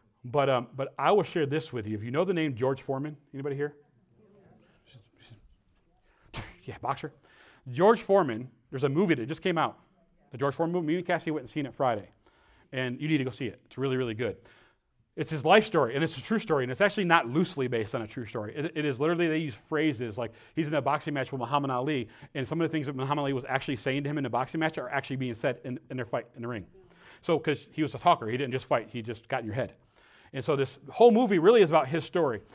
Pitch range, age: 125-160 Hz, 40-59